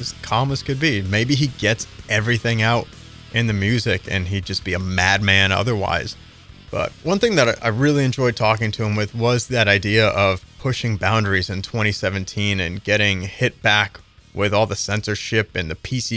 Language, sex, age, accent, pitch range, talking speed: English, male, 30-49, American, 95-115 Hz, 180 wpm